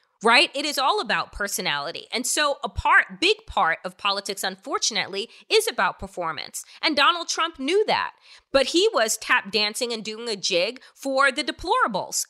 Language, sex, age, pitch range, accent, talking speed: English, female, 30-49, 225-335 Hz, American, 170 wpm